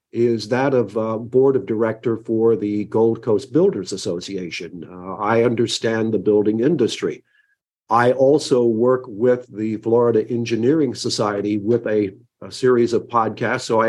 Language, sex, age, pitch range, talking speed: English, male, 50-69, 110-130 Hz, 150 wpm